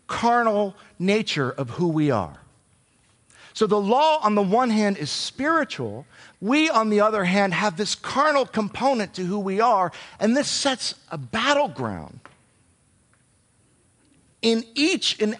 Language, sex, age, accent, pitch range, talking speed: English, male, 50-69, American, 175-250 Hz, 140 wpm